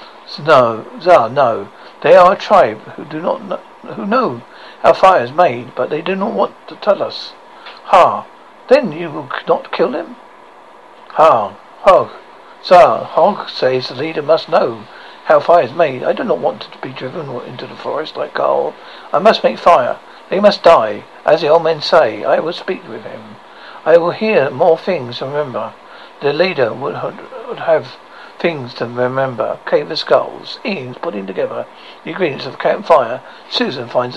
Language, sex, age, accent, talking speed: English, male, 60-79, British, 175 wpm